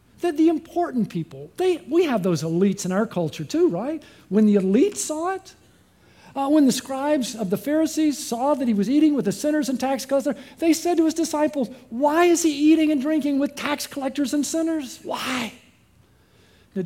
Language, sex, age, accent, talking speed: English, male, 50-69, American, 190 wpm